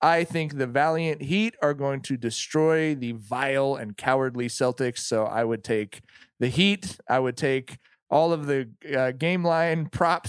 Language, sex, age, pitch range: English, male, 20-39, 135-175 Hz